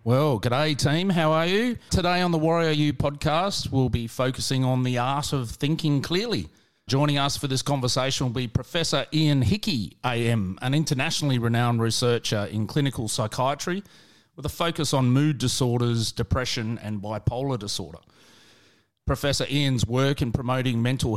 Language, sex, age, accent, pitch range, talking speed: English, male, 30-49, Australian, 115-145 Hz, 160 wpm